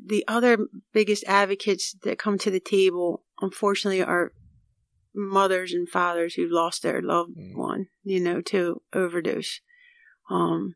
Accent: American